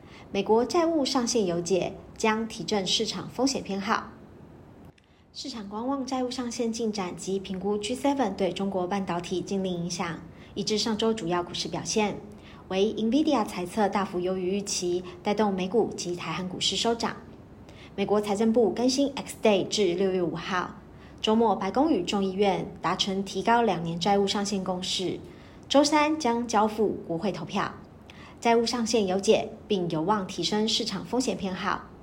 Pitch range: 185-230 Hz